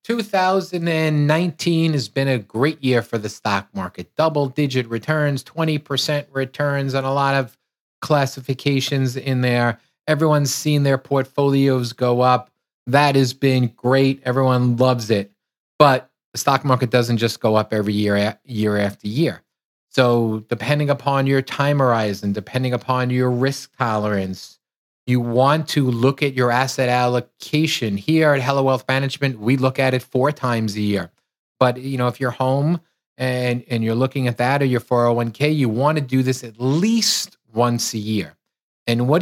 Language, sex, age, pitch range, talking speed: English, male, 30-49, 125-160 Hz, 160 wpm